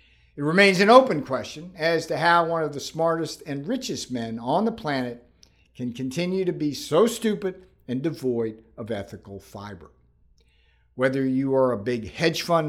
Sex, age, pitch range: male, 60-79, 115-160 Hz